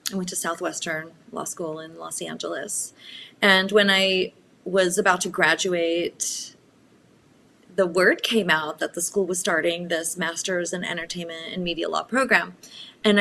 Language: English